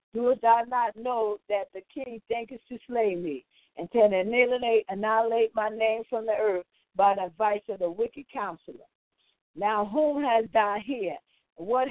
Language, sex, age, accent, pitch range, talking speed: English, female, 50-69, American, 210-250 Hz, 160 wpm